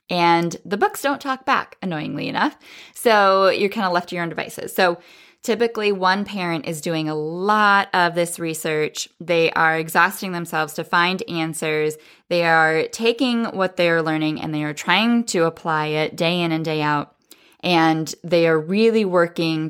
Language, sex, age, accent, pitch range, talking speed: English, female, 10-29, American, 155-200 Hz, 175 wpm